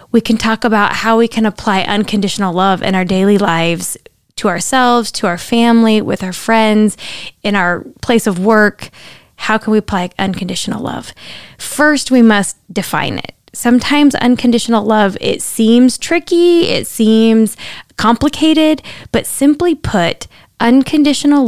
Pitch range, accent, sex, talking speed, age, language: 195-245 Hz, American, female, 140 wpm, 10-29, English